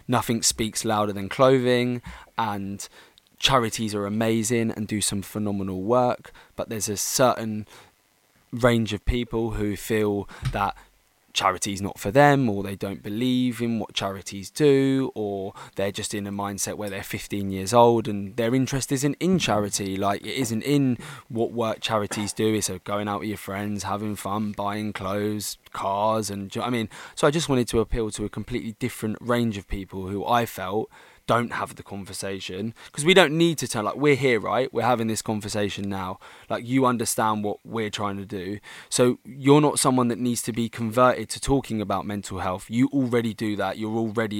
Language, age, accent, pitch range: English, 20-39, British, 100-120 Hz